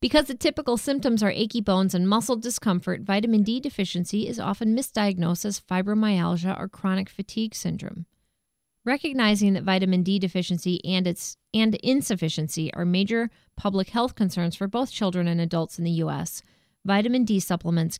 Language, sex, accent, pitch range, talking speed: English, female, American, 170-210 Hz, 155 wpm